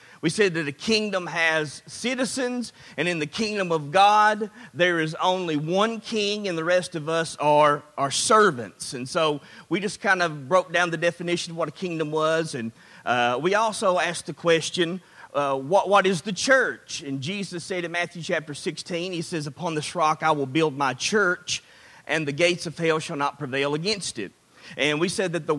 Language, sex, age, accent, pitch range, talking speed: English, male, 40-59, American, 155-190 Hz, 200 wpm